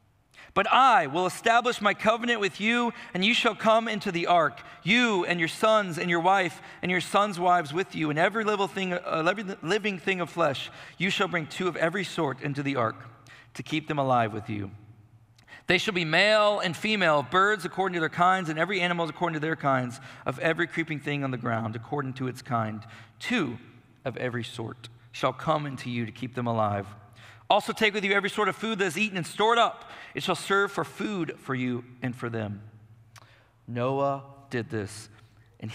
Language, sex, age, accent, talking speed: English, male, 40-59, American, 200 wpm